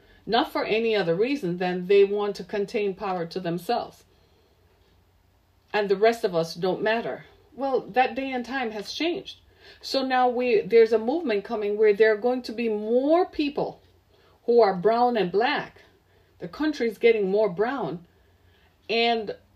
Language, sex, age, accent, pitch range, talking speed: English, female, 40-59, American, 200-275 Hz, 165 wpm